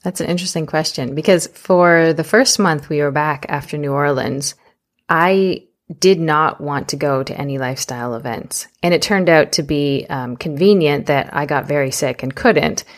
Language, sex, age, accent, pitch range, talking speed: English, female, 20-39, American, 150-185 Hz, 185 wpm